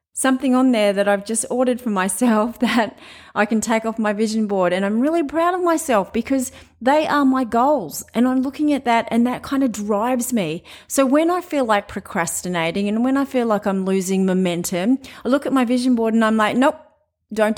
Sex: female